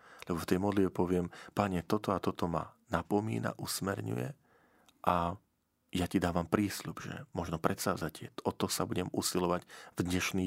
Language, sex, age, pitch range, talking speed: Slovak, male, 40-59, 85-105 Hz, 155 wpm